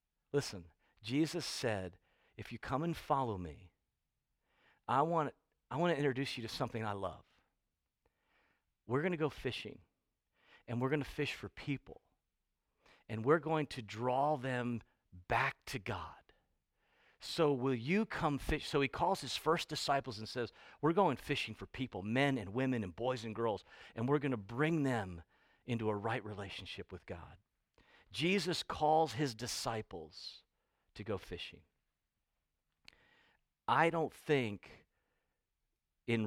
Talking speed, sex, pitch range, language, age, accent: 145 wpm, male, 110-145 Hz, English, 50-69, American